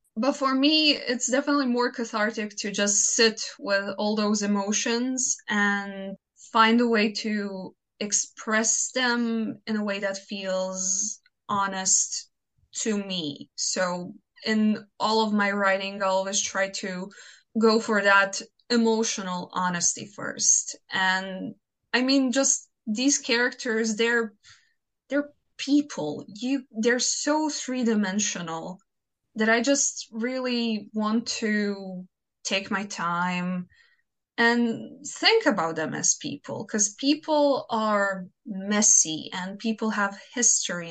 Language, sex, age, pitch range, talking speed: English, female, 20-39, 205-255 Hz, 120 wpm